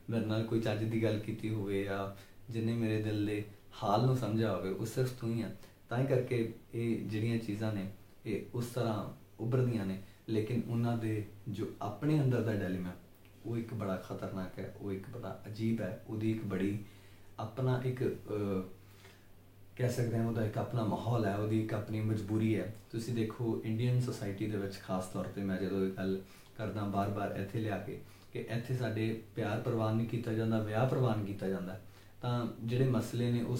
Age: 30-49